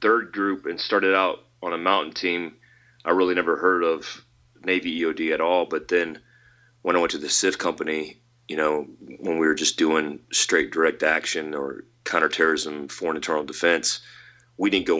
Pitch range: 75-120 Hz